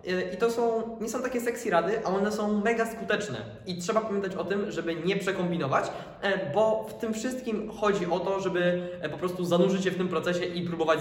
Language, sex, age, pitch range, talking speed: Polish, male, 20-39, 155-195 Hz, 205 wpm